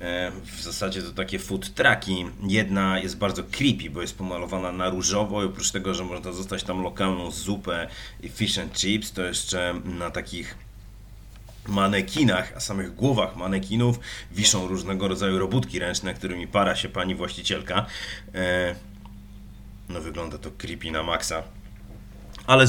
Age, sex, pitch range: 30-49, male, 95-110 Hz